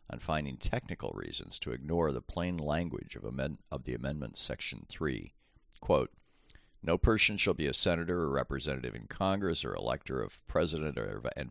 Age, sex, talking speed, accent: 50-69, male, 175 wpm, American